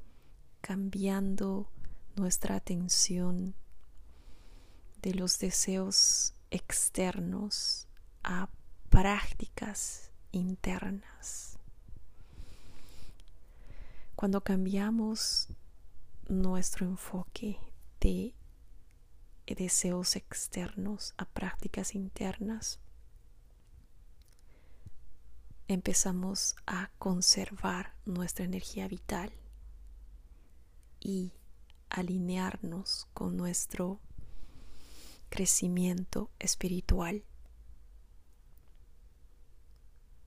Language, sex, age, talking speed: Spanish, female, 30-49, 50 wpm